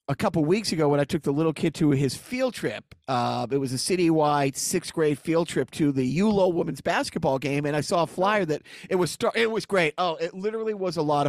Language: English